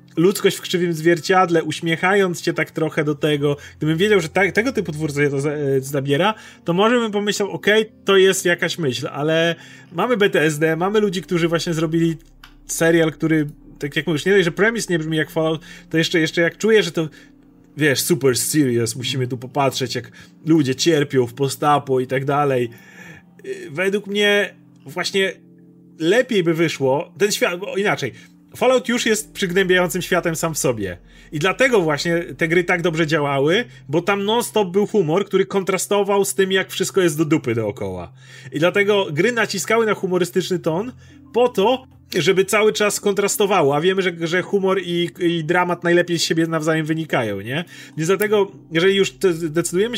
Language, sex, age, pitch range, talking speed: Polish, male, 30-49, 155-195 Hz, 175 wpm